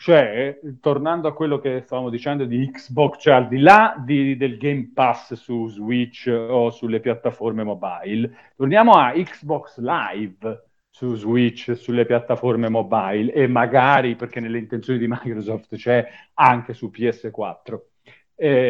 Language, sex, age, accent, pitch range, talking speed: Italian, male, 40-59, native, 120-170 Hz, 140 wpm